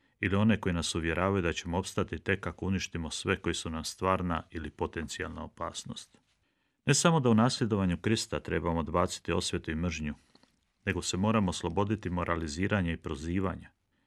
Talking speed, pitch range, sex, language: 160 wpm, 80-95 Hz, male, Croatian